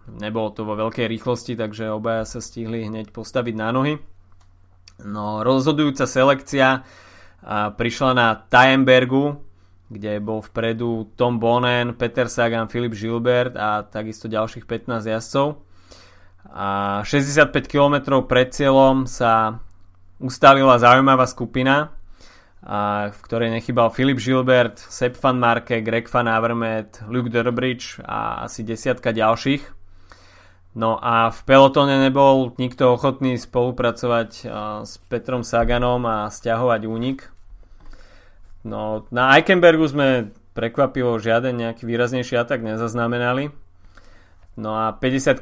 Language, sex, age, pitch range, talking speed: Slovak, male, 20-39, 105-125 Hz, 115 wpm